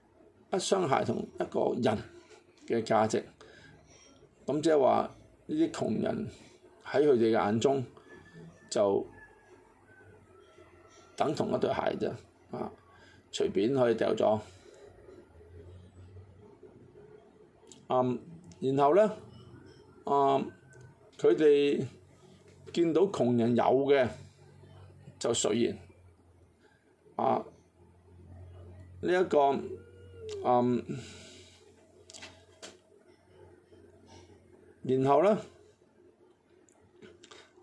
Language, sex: Chinese, male